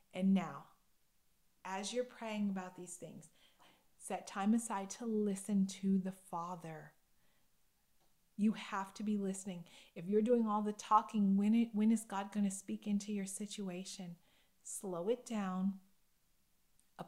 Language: English